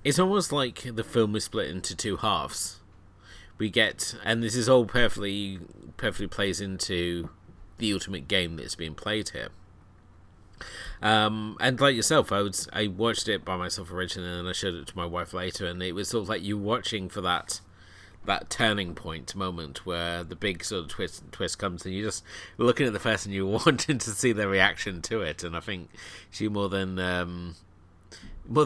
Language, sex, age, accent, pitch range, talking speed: English, male, 30-49, British, 90-110 Hz, 195 wpm